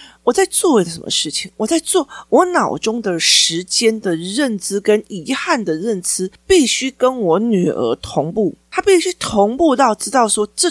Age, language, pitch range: 40-59, Chinese, 185-300 Hz